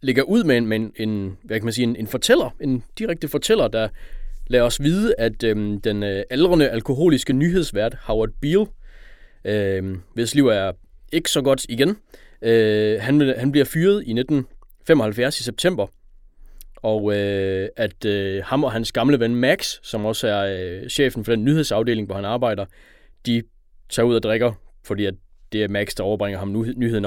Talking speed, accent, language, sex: 180 wpm, native, Danish, male